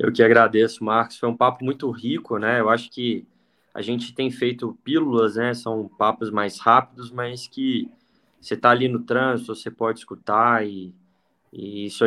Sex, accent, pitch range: male, Brazilian, 110-130 Hz